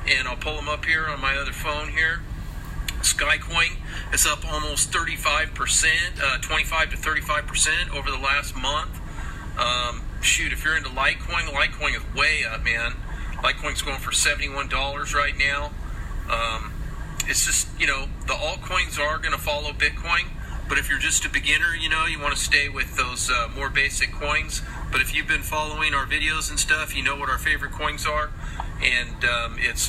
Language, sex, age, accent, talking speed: English, male, 40-59, American, 175 wpm